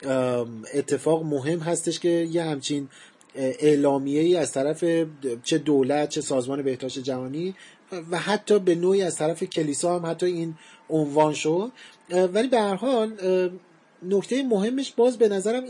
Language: Persian